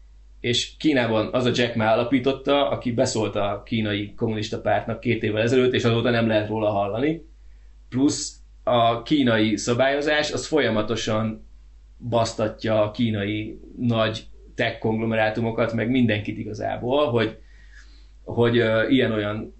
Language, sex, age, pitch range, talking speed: Hungarian, male, 20-39, 110-120 Hz, 120 wpm